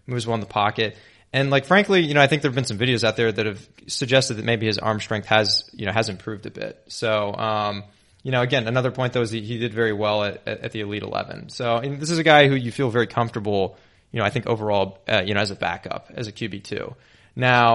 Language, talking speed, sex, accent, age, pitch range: English, 270 wpm, male, American, 20-39, 105-130 Hz